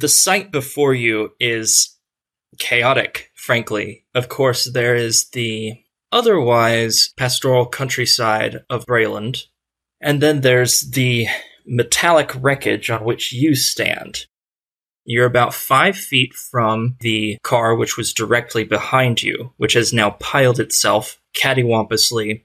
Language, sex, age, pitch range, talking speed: English, male, 20-39, 110-135 Hz, 120 wpm